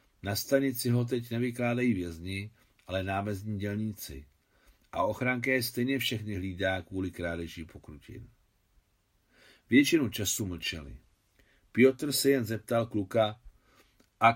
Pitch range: 95-125 Hz